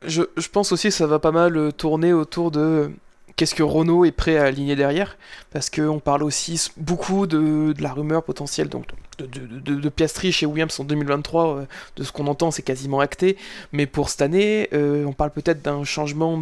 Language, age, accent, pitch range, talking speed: French, 20-39, French, 145-160 Hz, 210 wpm